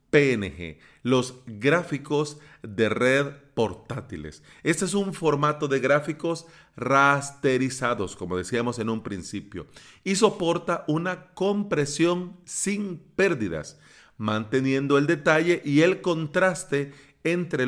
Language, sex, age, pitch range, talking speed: Spanish, male, 40-59, 110-160 Hz, 105 wpm